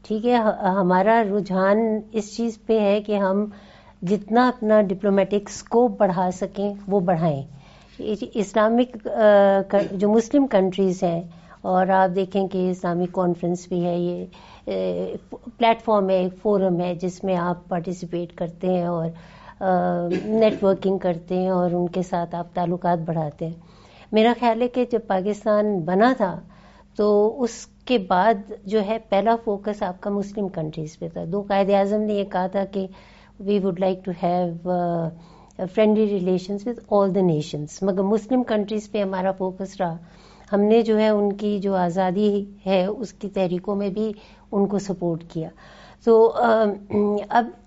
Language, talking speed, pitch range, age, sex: Urdu, 155 wpm, 185-215 Hz, 50-69, female